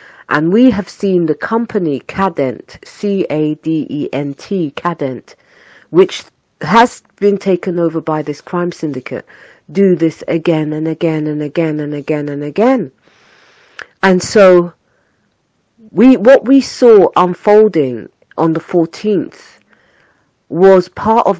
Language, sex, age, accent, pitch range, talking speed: English, female, 40-59, British, 135-185 Hz, 120 wpm